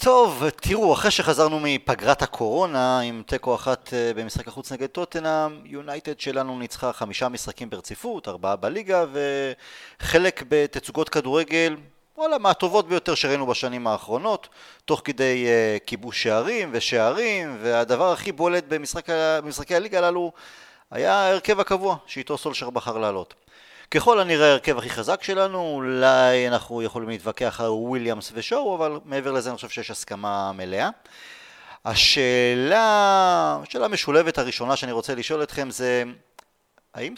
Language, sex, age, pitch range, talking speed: Hebrew, male, 30-49, 120-160 Hz, 130 wpm